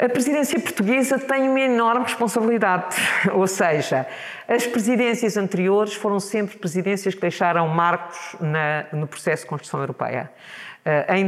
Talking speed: 130 wpm